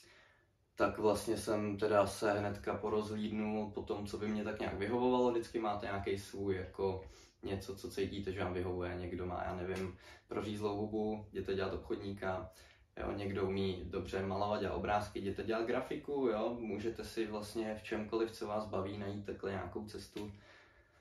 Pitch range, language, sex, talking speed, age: 95-105 Hz, Czech, male, 165 wpm, 20-39